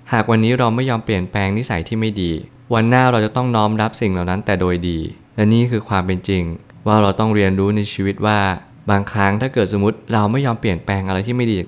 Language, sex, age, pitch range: Thai, male, 20-39, 95-115 Hz